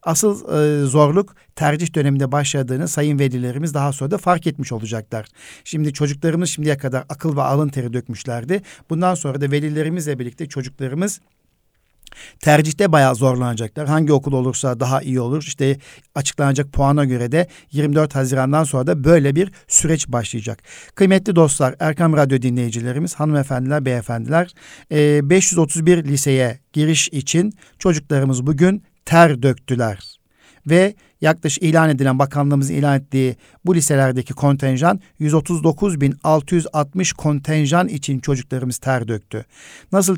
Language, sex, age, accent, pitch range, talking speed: Turkish, male, 60-79, native, 135-165 Hz, 125 wpm